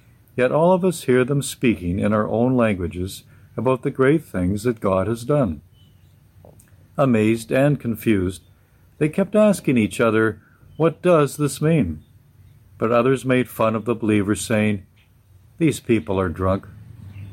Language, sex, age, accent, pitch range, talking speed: English, male, 60-79, American, 105-135 Hz, 150 wpm